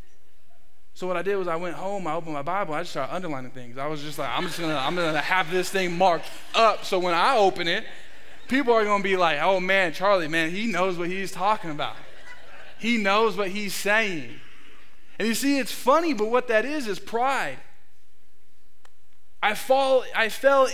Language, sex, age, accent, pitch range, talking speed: English, male, 20-39, American, 175-250 Hz, 205 wpm